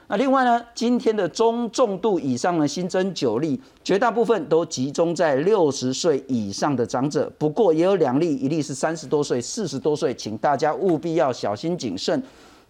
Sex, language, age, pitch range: male, Chinese, 50-69, 135-190 Hz